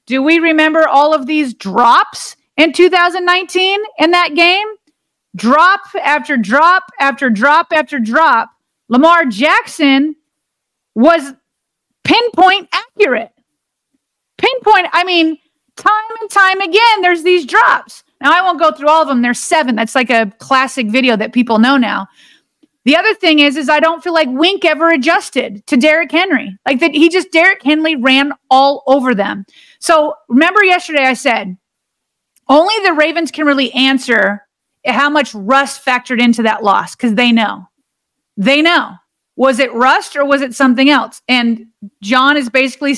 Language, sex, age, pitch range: English, female, 30-49, 240-330 Hz